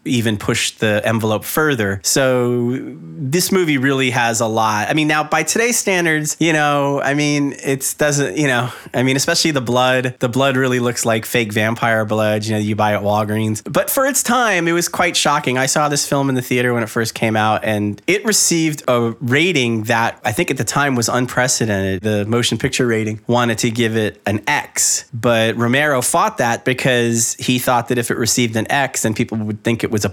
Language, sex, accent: English, male, American